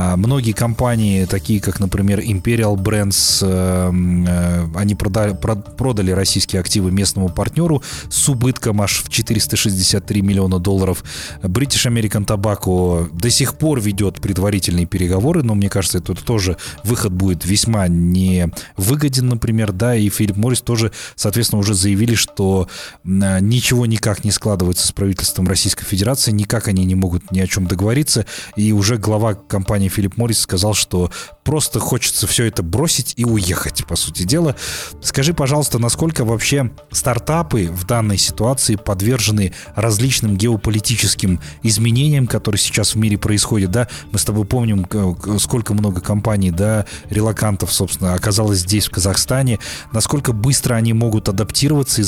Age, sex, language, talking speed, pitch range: 20-39, male, Russian, 140 wpm, 95-115 Hz